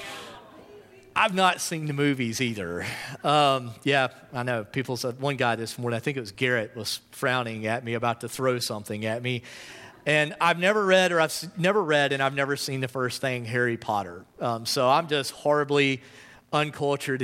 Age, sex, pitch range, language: 40-59, male, 130-190 Hz, English